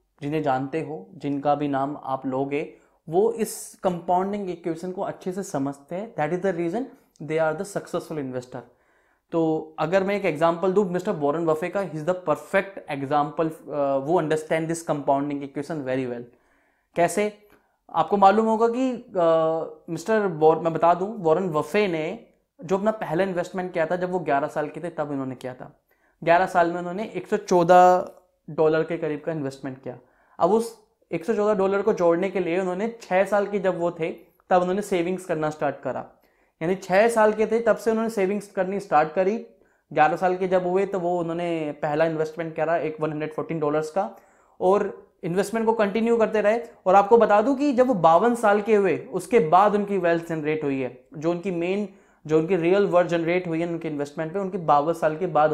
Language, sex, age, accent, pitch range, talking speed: Hindi, male, 20-39, native, 155-200 Hz, 195 wpm